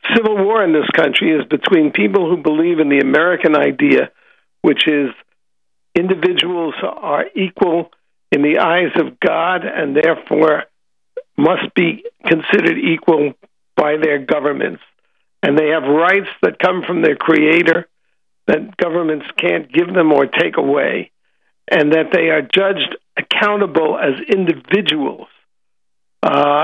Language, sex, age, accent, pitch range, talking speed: English, male, 60-79, American, 150-190 Hz, 135 wpm